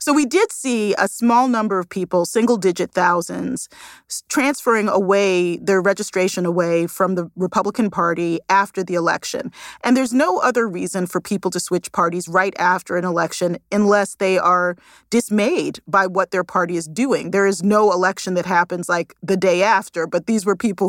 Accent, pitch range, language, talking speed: American, 175-200 Hz, English, 175 wpm